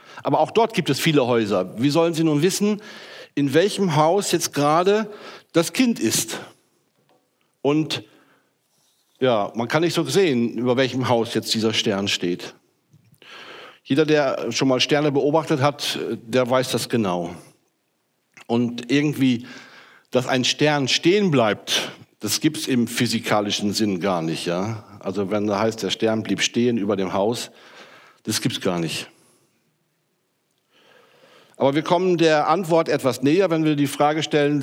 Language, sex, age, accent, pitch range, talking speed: German, male, 60-79, German, 125-165 Hz, 155 wpm